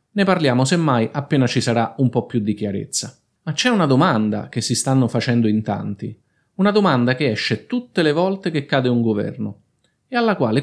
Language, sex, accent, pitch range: Italian, male, native, 115-165 Hz